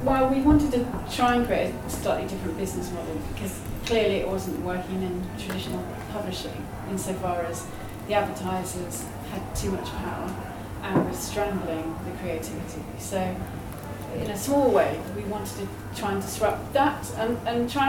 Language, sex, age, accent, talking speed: English, female, 30-49, British, 160 wpm